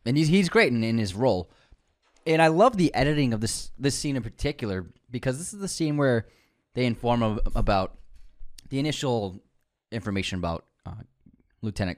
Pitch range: 95-130 Hz